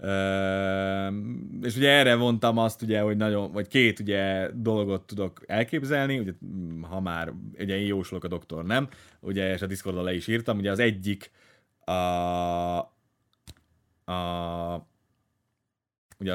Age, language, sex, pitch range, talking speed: 30-49, Hungarian, male, 90-115 Hz, 135 wpm